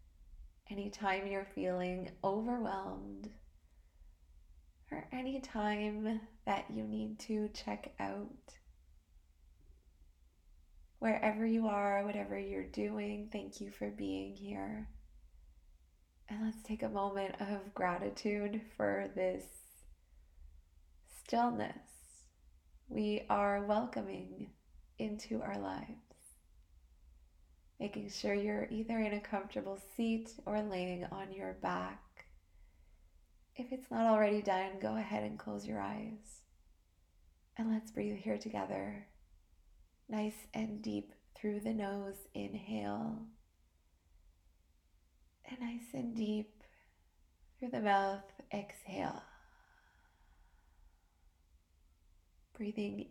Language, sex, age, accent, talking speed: English, female, 20-39, American, 95 wpm